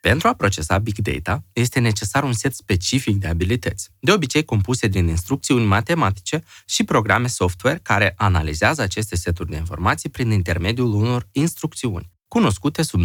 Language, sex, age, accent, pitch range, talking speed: Romanian, male, 20-39, native, 95-135 Hz, 150 wpm